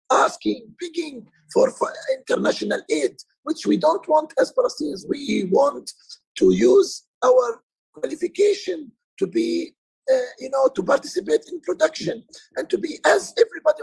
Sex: male